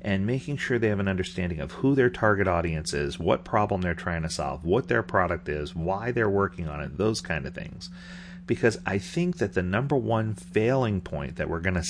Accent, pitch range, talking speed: American, 85-115 Hz, 225 wpm